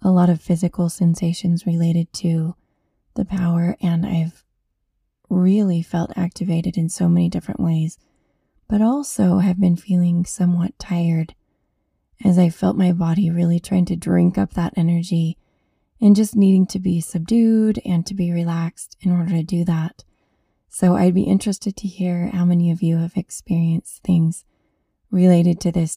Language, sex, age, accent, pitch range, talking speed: English, female, 20-39, American, 170-185 Hz, 160 wpm